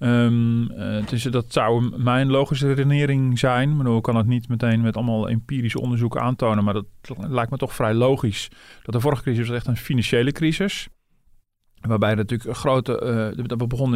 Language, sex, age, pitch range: Dutch, male, 40-59, 110-130 Hz